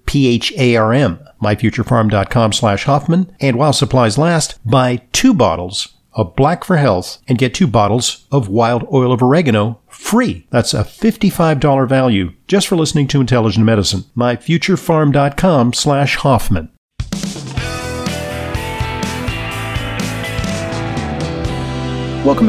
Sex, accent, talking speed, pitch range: male, American, 105 wpm, 105-135 Hz